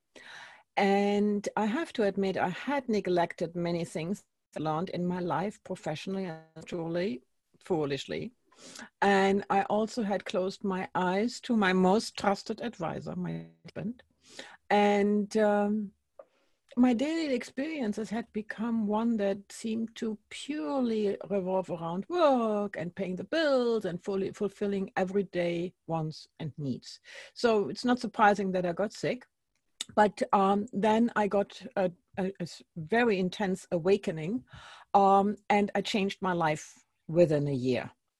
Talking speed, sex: 135 wpm, female